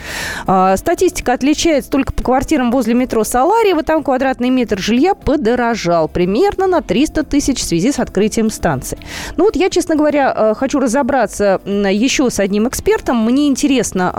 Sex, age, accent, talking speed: female, 20-39, native, 150 wpm